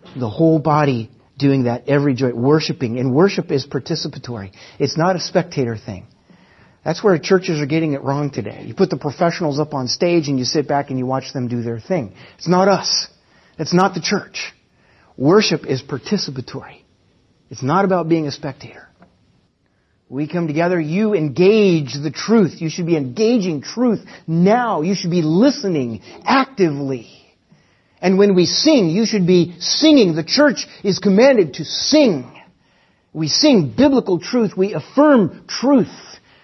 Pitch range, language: 135-190 Hz, English